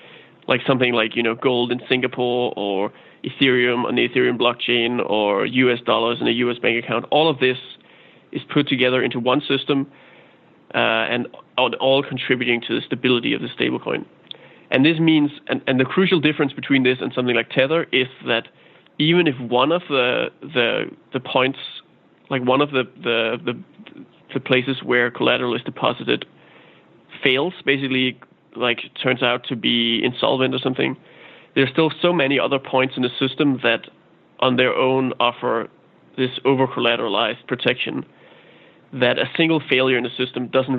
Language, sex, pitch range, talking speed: English, male, 120-135 Hz, 170 wpm